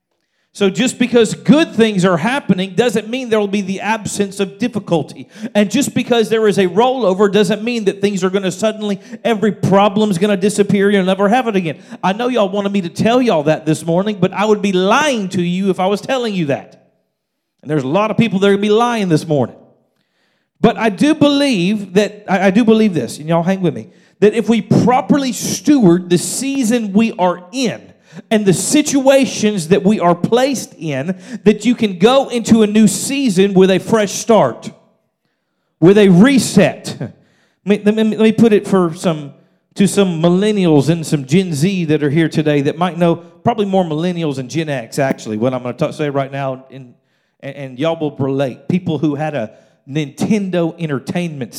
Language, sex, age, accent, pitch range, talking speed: English, male, 40-59, American, 165-220 Hz, 200 wpm